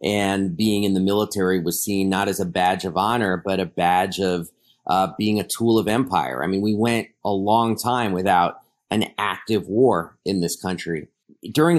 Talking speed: 195 wpm